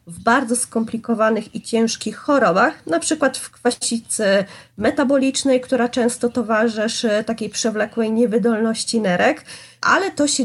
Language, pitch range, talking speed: Polish, 220-265 Hz, 120 wpm